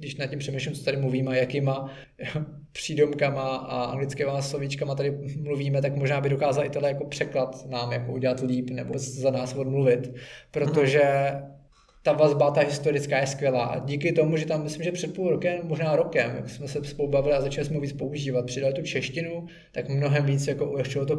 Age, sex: 20-39, male